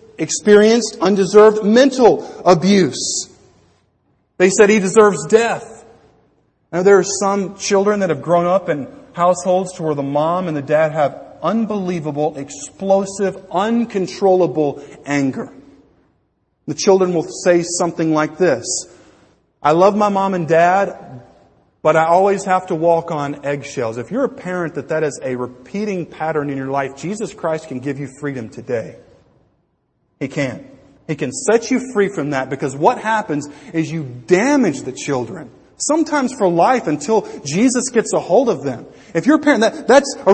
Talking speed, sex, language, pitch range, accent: 160 wpm, male, English, 155-240 Hz, American